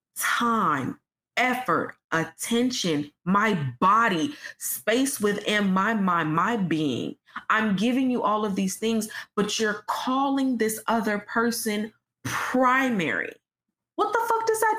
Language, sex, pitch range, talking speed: English, female, 200-265 Hz, 120 wpm